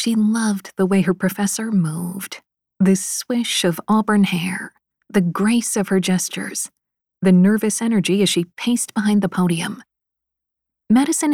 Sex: female